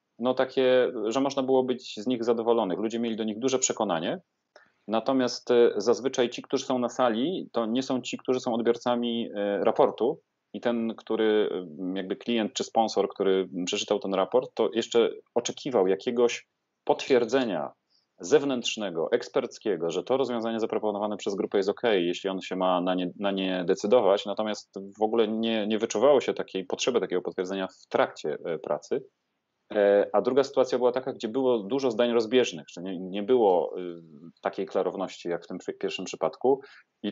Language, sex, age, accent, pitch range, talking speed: Polish, male, 30-49, native, 100-125 Hz, 160 wpm